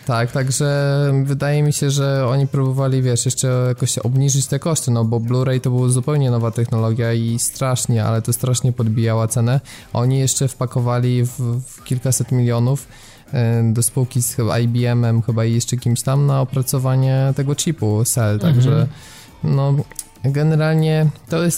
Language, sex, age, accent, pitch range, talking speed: Polish, male, 20-39, native, 120-135 Hz, 155 wpm